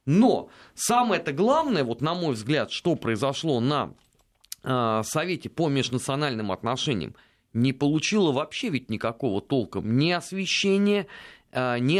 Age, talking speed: 30-49, 125 wpm